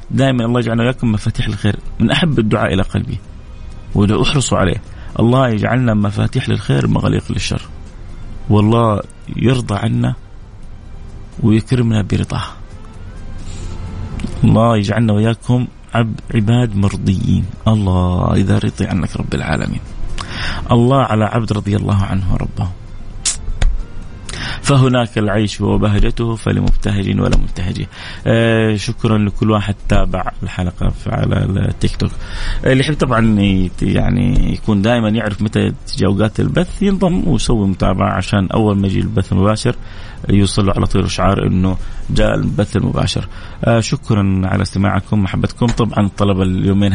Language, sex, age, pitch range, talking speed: Arabic, male, 30-49, 95-115 Hz, 120 wpm